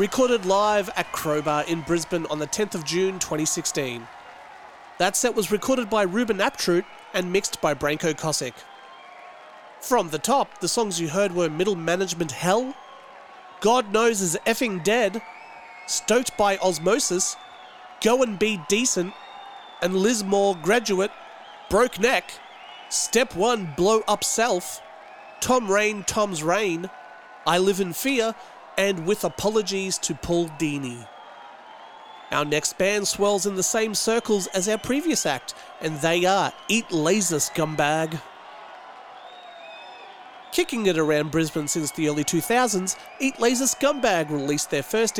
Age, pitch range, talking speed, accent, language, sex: 30-49, 170-230 Hz, 135 wpm, Australian, English, male